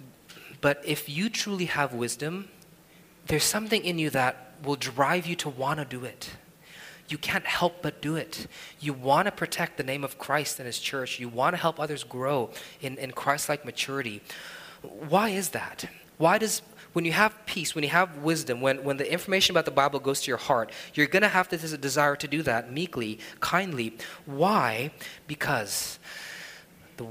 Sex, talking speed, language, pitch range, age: male, 185 wpm, English, 125-170 Hz, 20-39